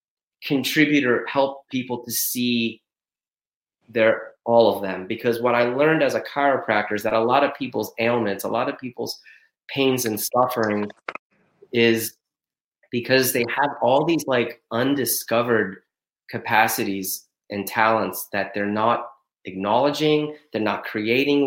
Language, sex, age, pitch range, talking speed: English, male, 30-49, 110-135 Hz, 135 wpm